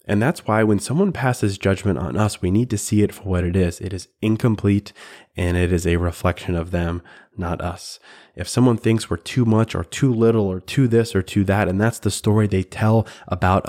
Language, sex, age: English, male, 20-39